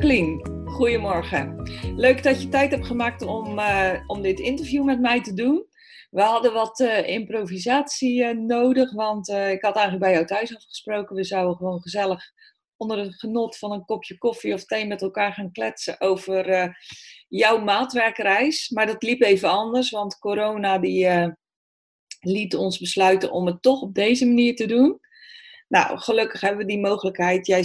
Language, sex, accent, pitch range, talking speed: Dutch, female, Dutch, 185-235 Hz, 175 wpm